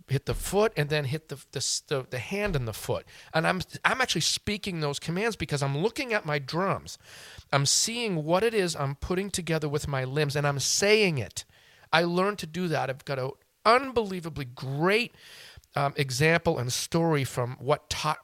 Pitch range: 135-175 Hz